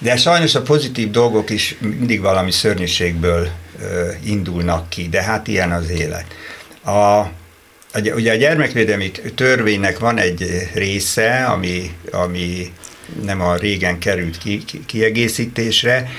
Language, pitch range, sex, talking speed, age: Hungarian, 85-110 Hz, male, 125 wpm, 60-79